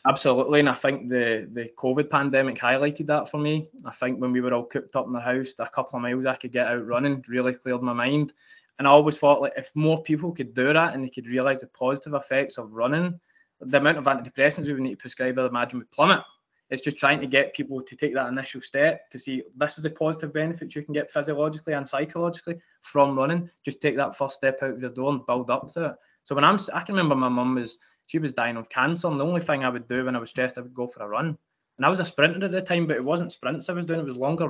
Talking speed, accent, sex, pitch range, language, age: 275 wpm, British, male, 130-155 Hz, English, 20-39